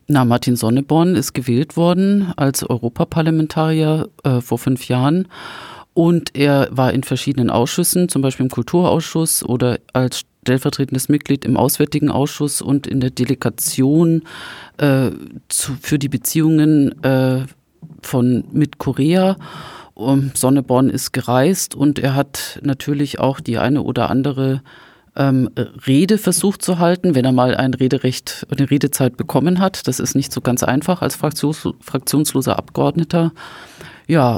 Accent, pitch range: German, 130-150 Hz